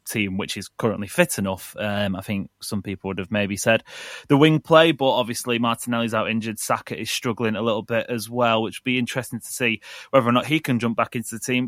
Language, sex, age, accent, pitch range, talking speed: English, male, 20-39, British, 105-125 Hz, 240 wpm